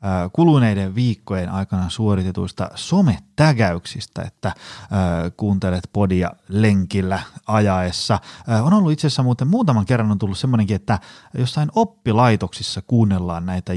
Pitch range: 95-135 Hz